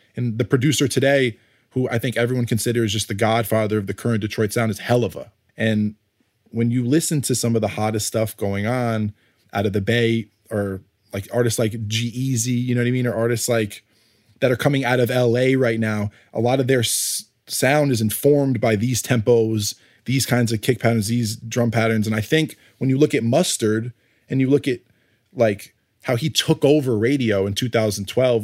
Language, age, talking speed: English, 20-39, 205 wpm